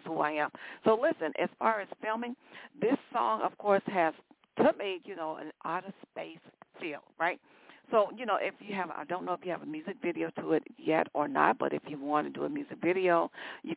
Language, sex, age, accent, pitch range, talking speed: English, female, 40-59, American, 160-205 Hz, 235 wpm